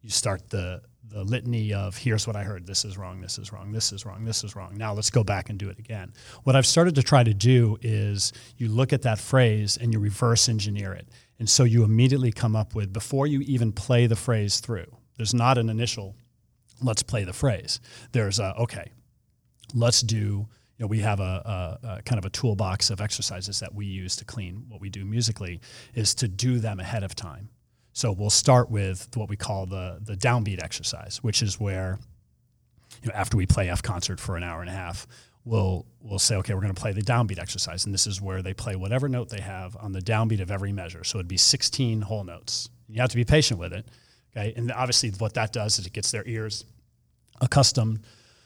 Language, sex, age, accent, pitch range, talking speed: English, male, 40-59, American, 100-120 Hz, 225 wpm